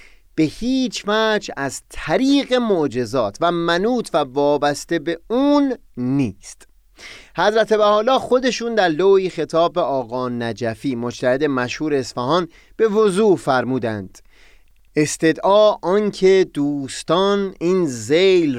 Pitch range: 125-185 Hz